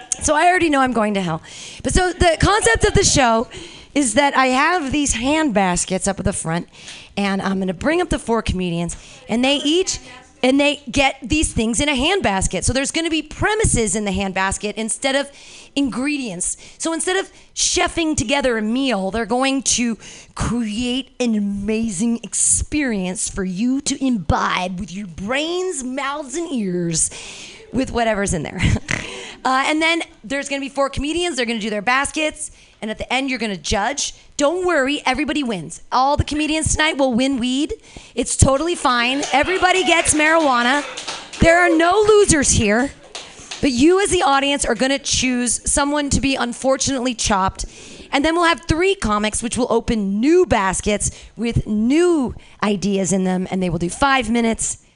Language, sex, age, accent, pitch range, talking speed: English, female, 30-49, American, 215-300 Hz, 180 wpm